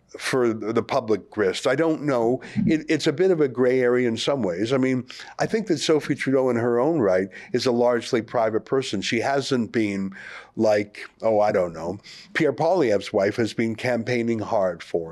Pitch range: 110-140 Hz